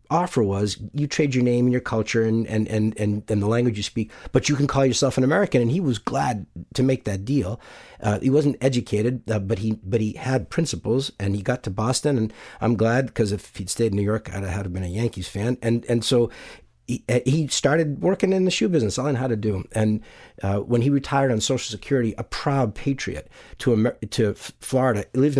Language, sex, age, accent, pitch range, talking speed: English, male, 50-69, American, 105-130 Hz, 235 wpm